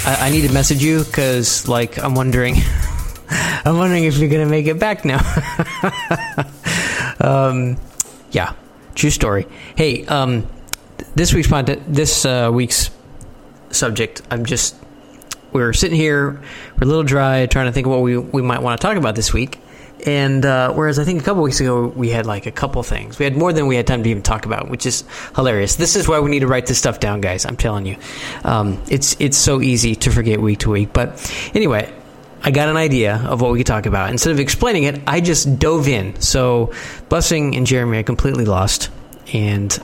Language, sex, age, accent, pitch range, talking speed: English, male, 20-39, American, 115-150 Hz, 205 wpm